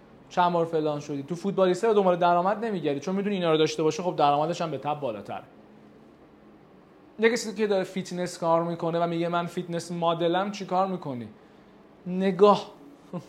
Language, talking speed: Persian, 165 wpm